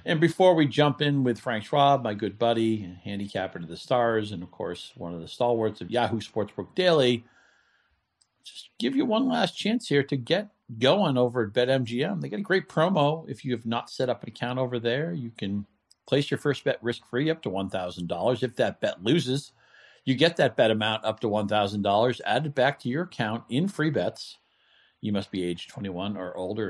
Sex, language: male, English